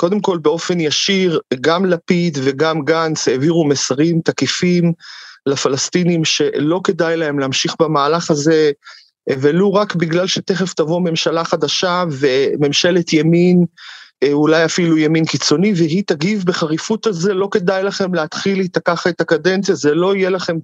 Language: Hebrew